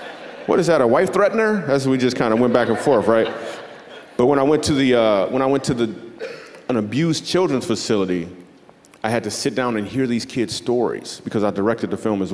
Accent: American